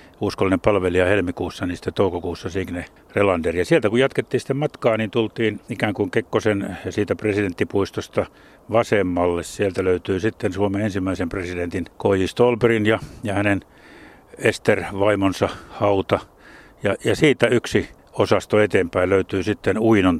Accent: native